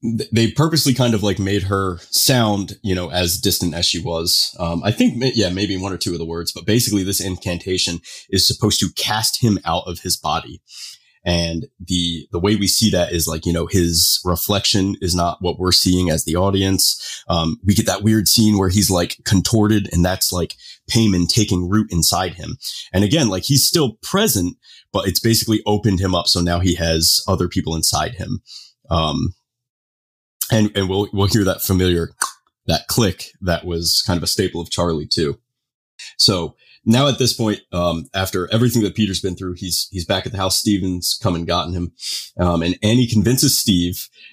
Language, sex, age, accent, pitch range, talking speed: English, male, 30-49, American, 90-110 Hz, 195 wpm